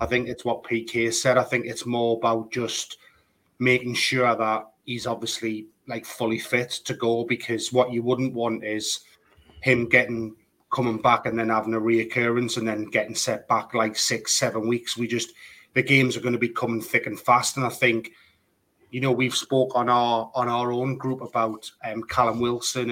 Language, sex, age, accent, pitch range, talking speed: English, male, 30-49, British, 115-125 Hz, 195 wpm